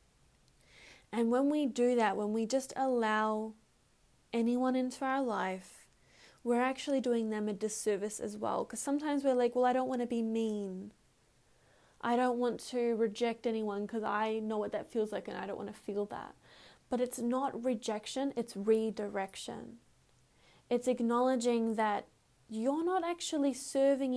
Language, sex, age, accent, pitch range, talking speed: English, female, 10-29, Australian, 215-250 Hz, 160 wpm